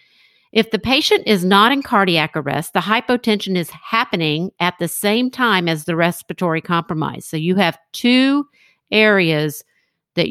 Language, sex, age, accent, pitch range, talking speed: English, female, 50-69, American, 170-220 Hz, 150 wpm